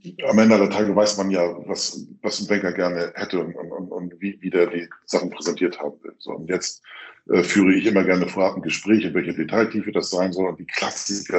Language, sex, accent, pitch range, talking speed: German, male, German, 90-105 Hz, 235 wpm